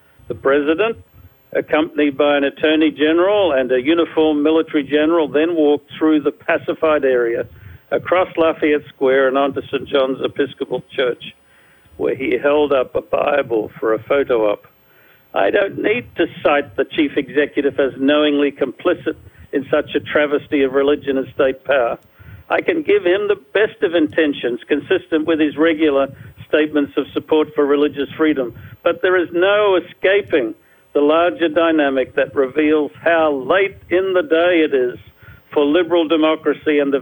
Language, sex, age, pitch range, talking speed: English, male, 60-79, 140-165 Hz, 155 wpm